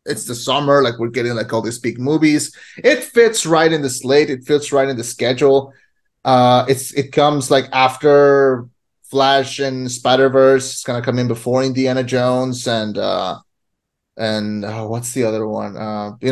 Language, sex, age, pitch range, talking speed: English, male, 30-49, 130-165 Hz, 185 wpm